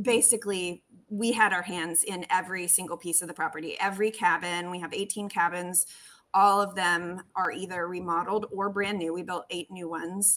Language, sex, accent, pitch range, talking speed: English, female, American, 180-215 Hz, 185 wpm